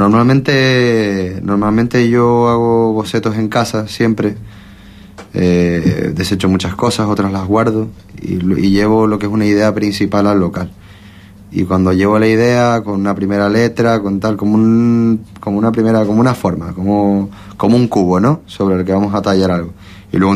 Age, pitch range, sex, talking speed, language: 30-49, 95-110 Hz, male, 175 wpm, Spanish